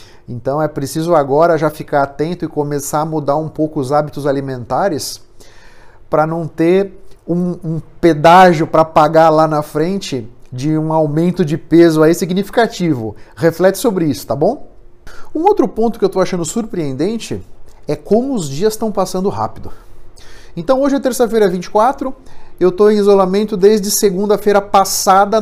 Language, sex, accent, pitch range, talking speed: Portuguese, male, Brazilian, 155-225 Hz, 155 wpm